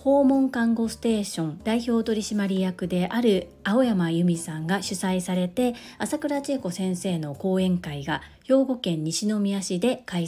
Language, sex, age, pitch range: Japanese, female, 40-59, 180-240 Hz